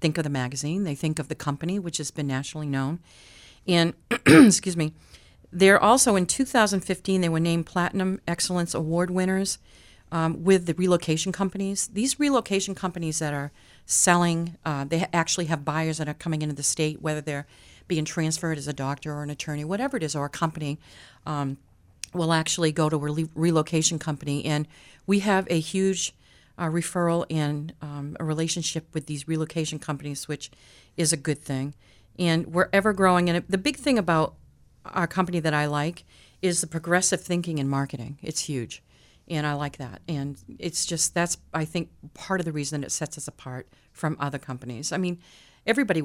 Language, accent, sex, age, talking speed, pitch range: English, American, female, 40-59, 180 wpm, 145-175 Hz